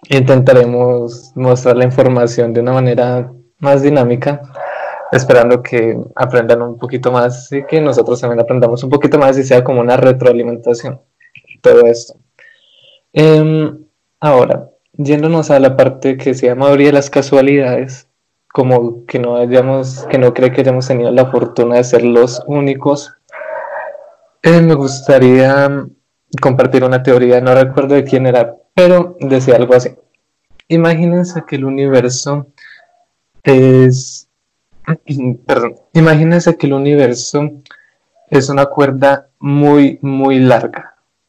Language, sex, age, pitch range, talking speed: Spanish, male, 20-39, 125-145 Hz, 130 wpm